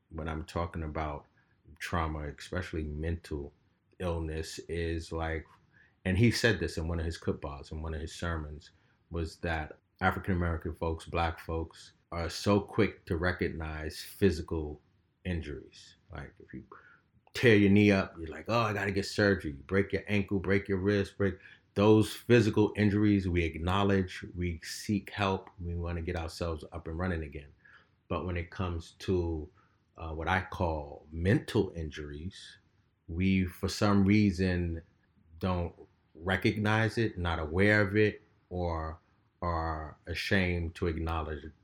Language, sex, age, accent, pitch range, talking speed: English, male, 30-49, American, 80-100 Hz, 150 wpm